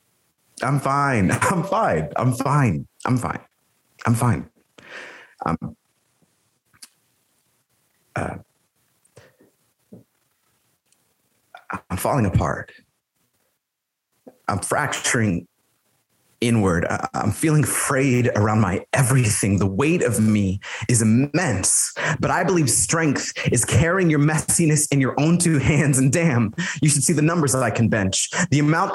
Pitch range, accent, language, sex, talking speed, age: 120-165 Hz, American, English, male, 115 wpm, 30-49